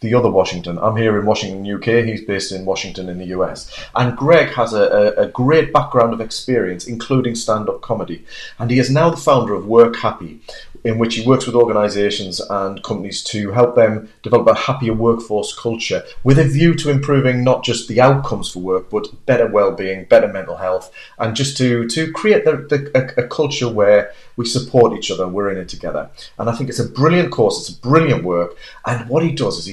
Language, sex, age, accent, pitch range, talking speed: English, male, 30-49, British, 95-130 Hz, 210 wpm